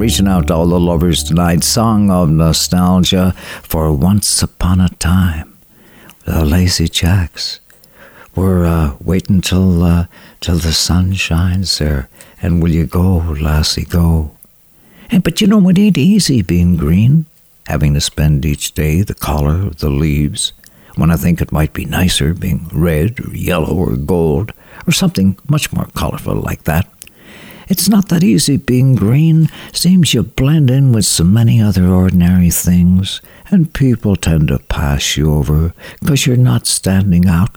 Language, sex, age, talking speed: English, male, 60-79, 160 wpm